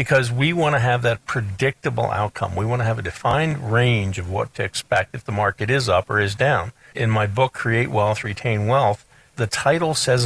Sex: male